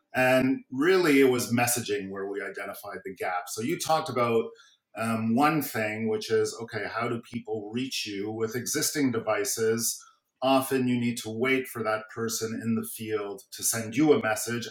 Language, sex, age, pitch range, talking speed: English, male, 40-59, 110-135 Hz, 180 wpm